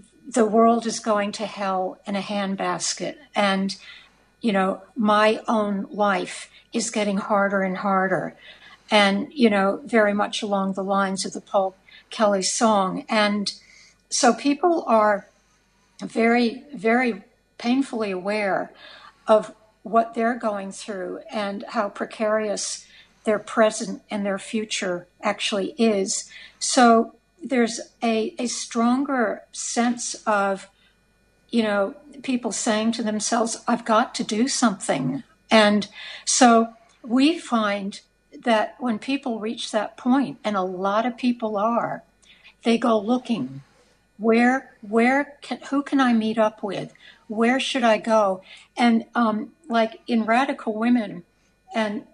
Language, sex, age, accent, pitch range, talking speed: English, female, 60-79, American, 205-245 Hz, 130 wpm